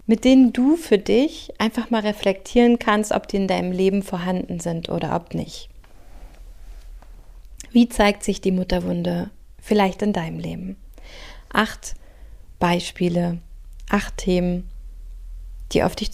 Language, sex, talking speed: German, female, 130 wpm